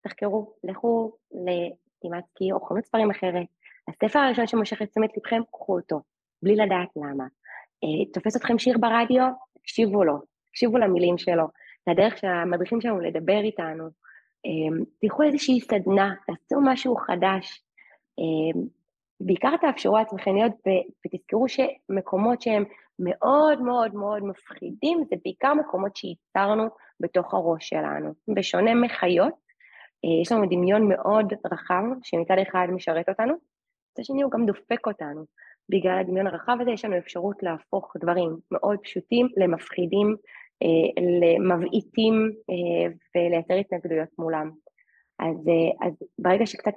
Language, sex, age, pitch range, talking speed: Hebrew, female, 20-39, 175-225 Hz, 120 wpm